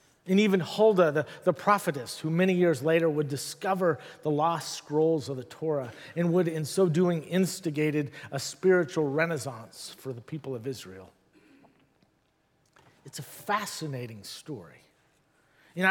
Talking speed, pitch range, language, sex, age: 135 wpm, 145-190 Hz, English, male, 40-59